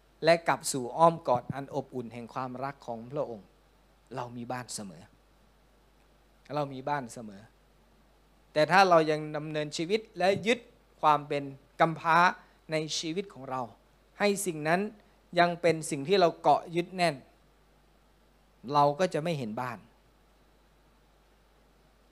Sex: male